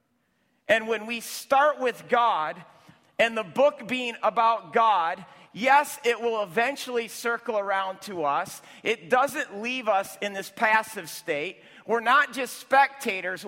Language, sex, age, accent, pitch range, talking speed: English, male, 40-59, American, 180-240 Hz, 140 wpm